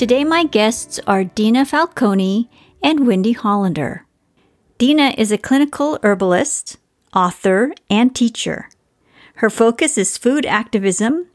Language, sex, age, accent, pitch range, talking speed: English, female, 50-69, American, 205-255 Hz, 115 wpm